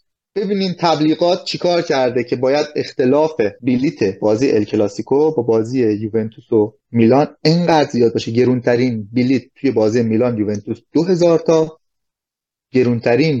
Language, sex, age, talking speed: Persian, male, 30-49, 125 wpm